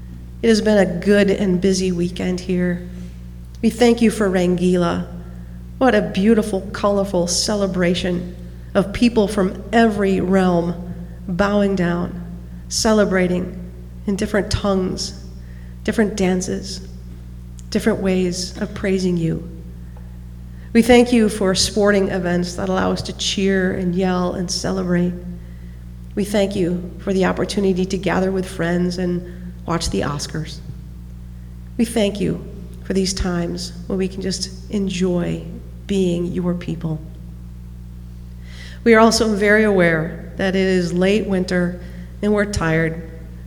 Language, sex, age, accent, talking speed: English, female, 40-59, American, 130 wpm